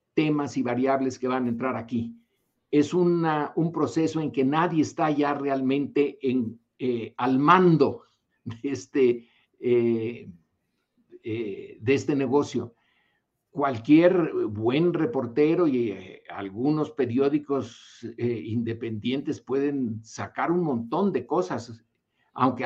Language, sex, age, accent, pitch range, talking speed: Spanish, male, 50-69, Mexican, 120-155 Hz, 105 wpm